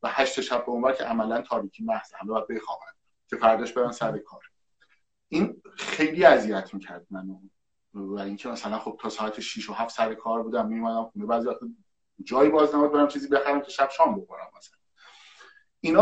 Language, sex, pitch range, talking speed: Persian, male, 110-160 Hz, 175 wpm